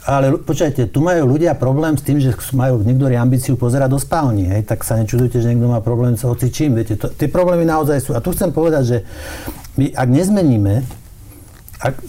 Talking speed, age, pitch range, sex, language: 190 wpm, 60-79, 115-135 Hz, male, Slovak